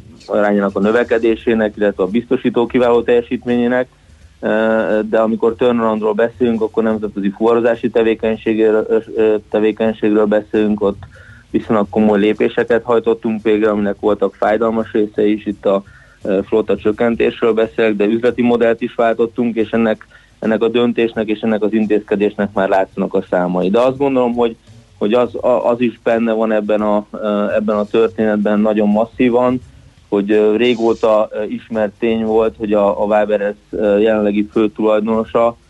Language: Hungarian